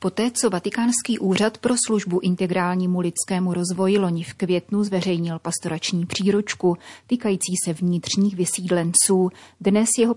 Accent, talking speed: native, 125 wpm